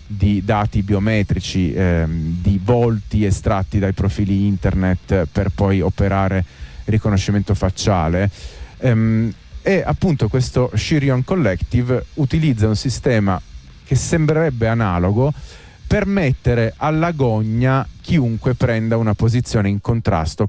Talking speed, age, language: 105 wpm, 30-49, Italian